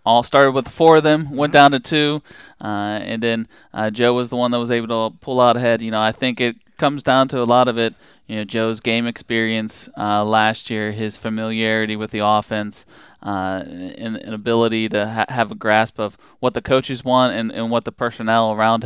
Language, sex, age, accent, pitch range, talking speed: English, male, 20-39, American, 110-125 Hz, 225 wpm